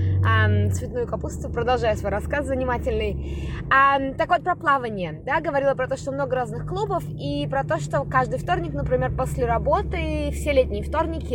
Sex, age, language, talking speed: female, 20-39, Russian, 160 wpm